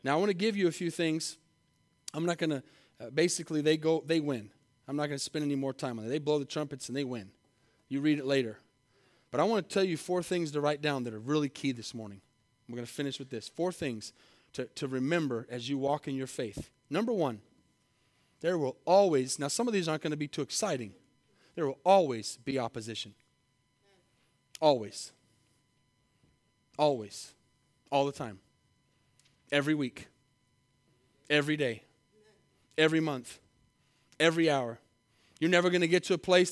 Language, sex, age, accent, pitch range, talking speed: English, male, 30-49, American, 135-190 Hz, 185 wpm